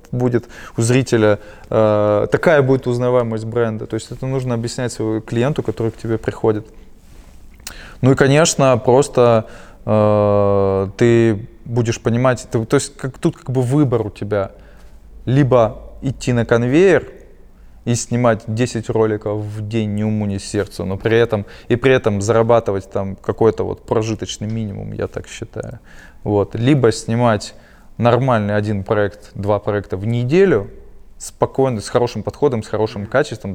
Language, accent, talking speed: Russian, native, 145 wpm